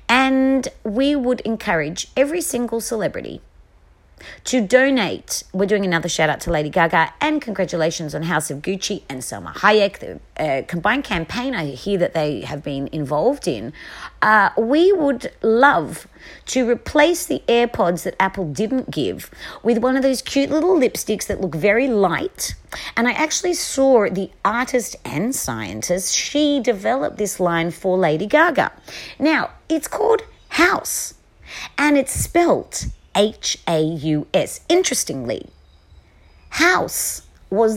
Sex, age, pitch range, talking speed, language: female, 40-59, 170-260 Hz, 135 wpm, English